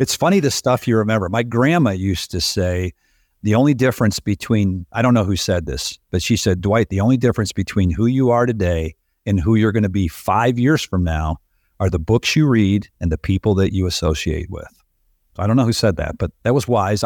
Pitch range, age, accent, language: 95-120 Hz, 50-69, American, English